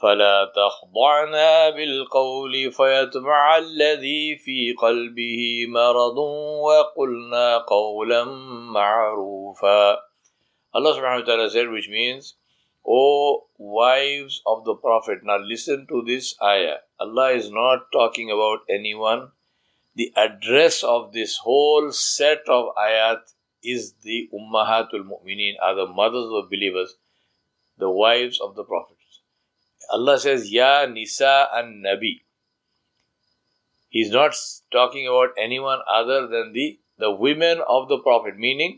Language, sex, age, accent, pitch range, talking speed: English, male, 50-69, Indian, 110-145 Hz, 115 wpm